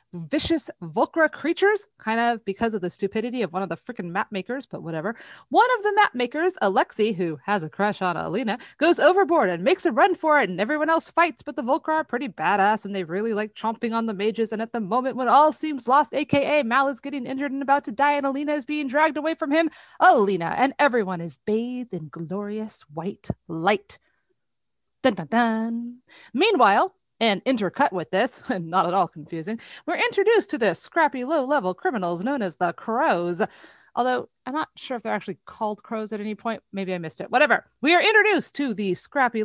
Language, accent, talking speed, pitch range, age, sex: English, American, 210 wpm, 205-295 Hz, 30-49, female